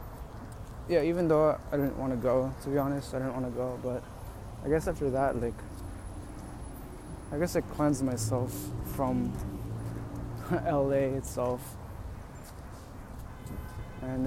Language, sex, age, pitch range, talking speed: English, male, 20-39, 110-150 Hz, 130 wpm